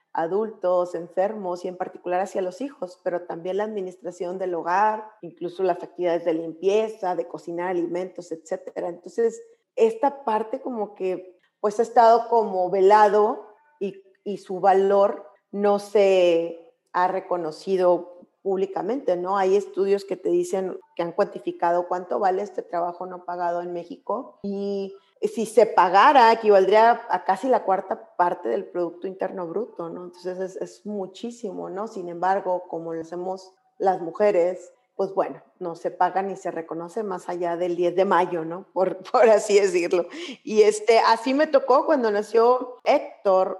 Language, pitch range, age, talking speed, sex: Spanish, 180-215 Hz, 30-49, 155 wpm, female